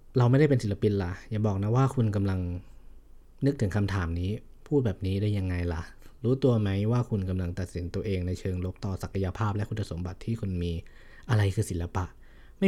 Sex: male